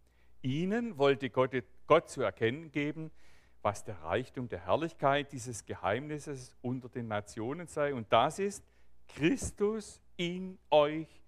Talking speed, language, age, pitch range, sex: 130 wpm, German, 40-59, 100-155 Hz, male